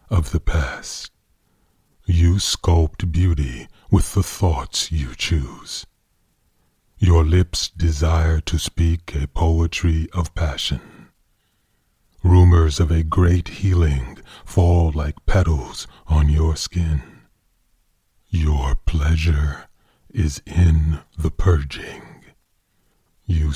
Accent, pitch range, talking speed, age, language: American, 75-85 Hz, 95 wpm, 40-59, English